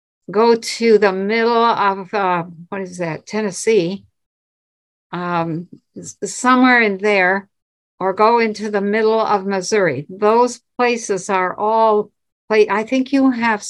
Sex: female